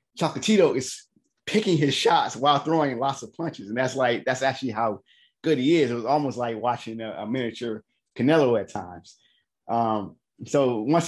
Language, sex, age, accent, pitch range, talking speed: English, male, 20-39, American, 115-140 Hz, 180 wpm